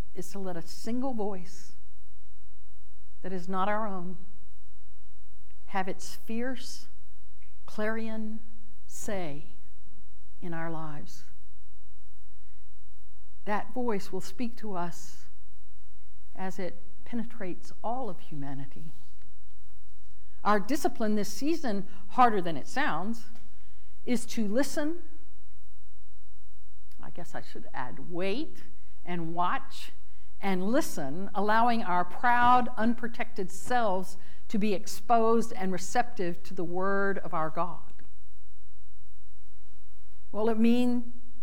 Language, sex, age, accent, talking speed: English, female, 60-79, American, 105 wpm